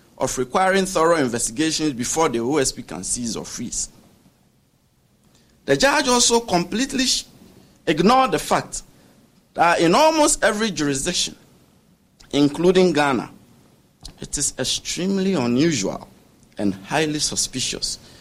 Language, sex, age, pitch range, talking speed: English, male, 50-69, 120-195 Hz, 105 wpm